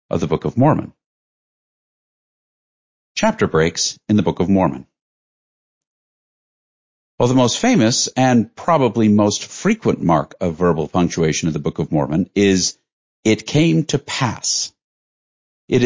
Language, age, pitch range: English, 50-69, 90-120 Hz